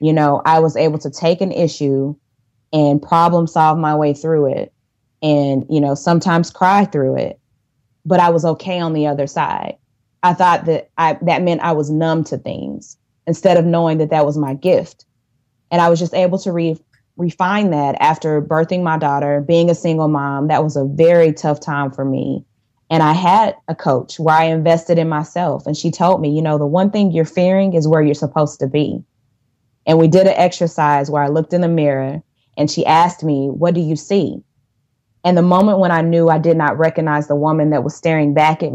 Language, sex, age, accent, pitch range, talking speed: English, female, 20-39, American, 145-170 Hz, 215 wpm